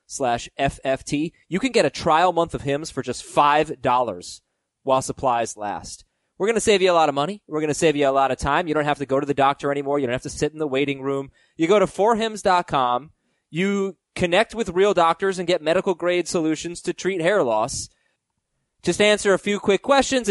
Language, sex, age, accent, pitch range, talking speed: English, male, 20-39, American, 140-185 Hz, 225 wpm